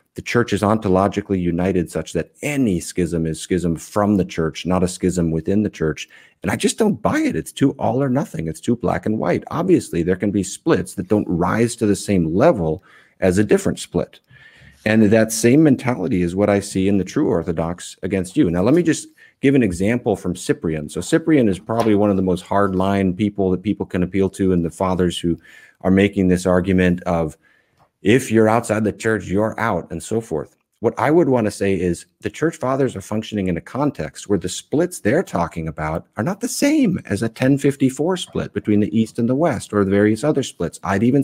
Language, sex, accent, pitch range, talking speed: English, male, American, 90-115 Hz, 220 wpm